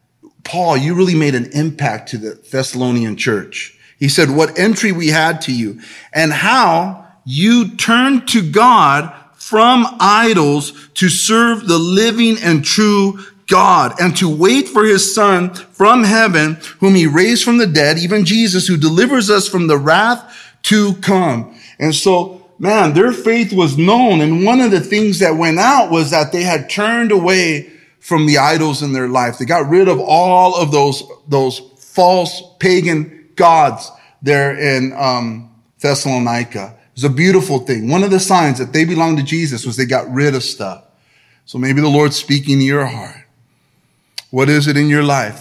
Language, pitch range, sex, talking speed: English, 130-190 Hz, male, 175 wpm